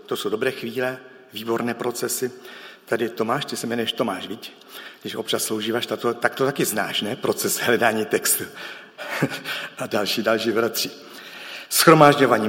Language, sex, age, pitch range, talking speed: Czech, male, 50-69, 115-145 Hz, 140 wpm